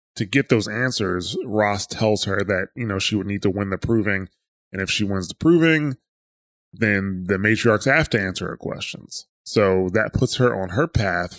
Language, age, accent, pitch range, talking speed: English, 20-39, American, 95-115 Hz, 200 wpm